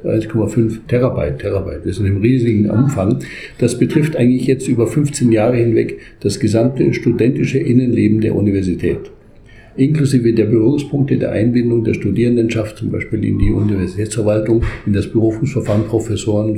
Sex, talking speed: male, 140 wpm